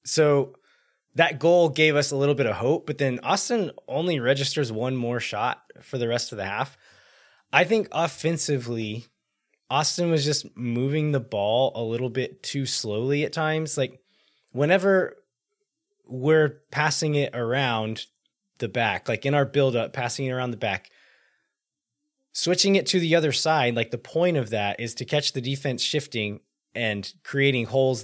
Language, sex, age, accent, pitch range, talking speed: English, male, 20-39, American, 110-150 Hz, 165 wpm